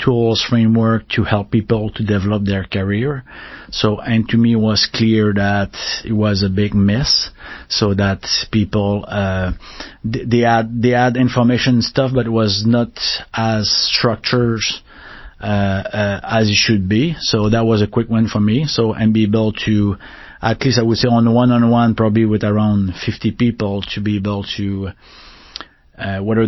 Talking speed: 170 wpm